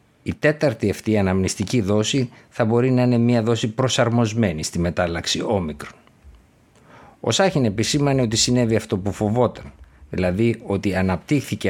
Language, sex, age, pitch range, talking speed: Greek, male, 50-69, 95-115 Hz, 135 wpm